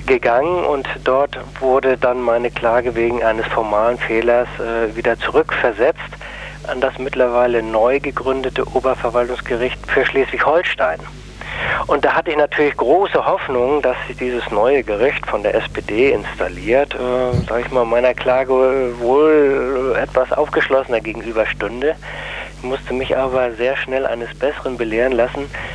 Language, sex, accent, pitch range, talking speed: German, male, German, 120-135 Hz, 135 wpm